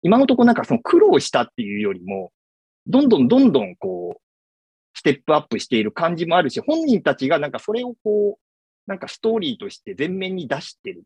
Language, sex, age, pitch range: Japanese, male, 40-59, 145-230 Hz